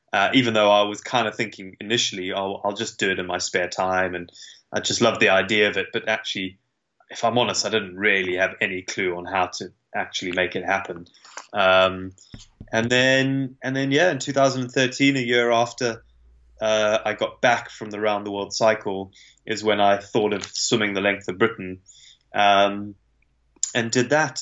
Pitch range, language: 100-125 Hz, English